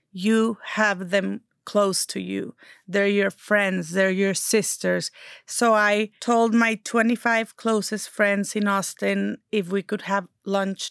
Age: 30-49